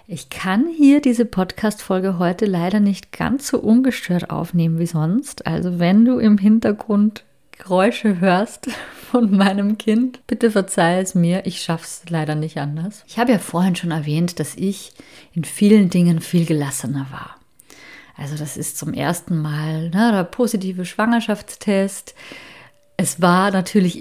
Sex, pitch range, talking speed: female, 170-210 Hz, 150 wpm